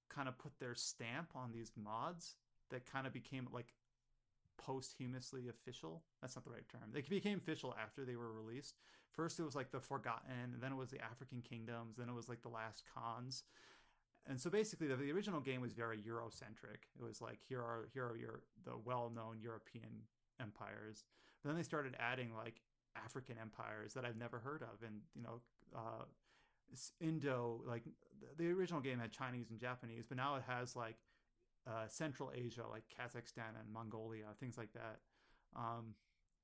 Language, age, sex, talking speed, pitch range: English, 30-49, male, 185 wpm, 115-135 Hz